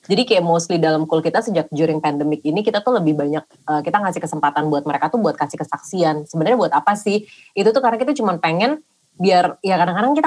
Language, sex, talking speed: Indonesian, female, 220 wpm